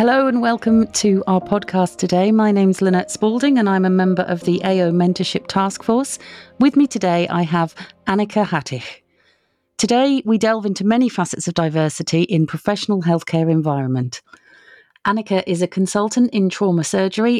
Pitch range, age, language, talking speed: 165-205 Hz, 40-59, English, 165 wpm